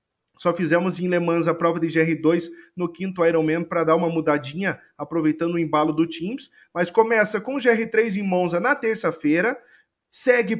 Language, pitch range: Portuguese, 170-215 Hz